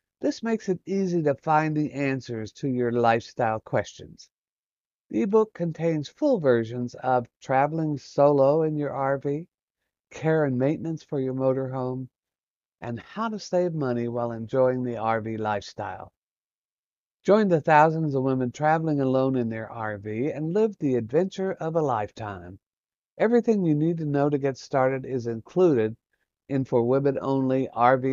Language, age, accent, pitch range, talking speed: English, 60-79, American, 120-170 Hz, 150 wpm